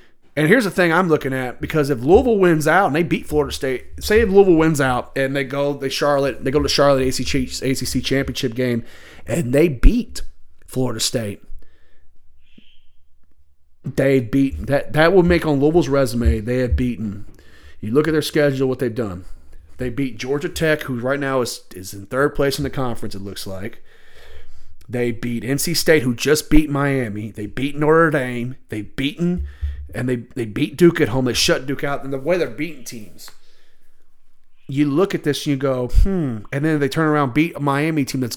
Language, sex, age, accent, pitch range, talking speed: English, male, 30-49, American, 120-145 Hz, 195 wpm